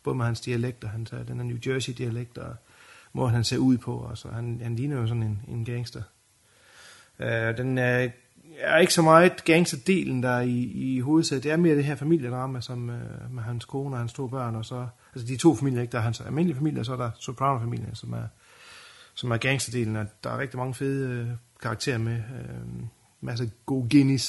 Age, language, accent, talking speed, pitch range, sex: 30-49, Danish, native, 210 wpm, 115-140 Hz, male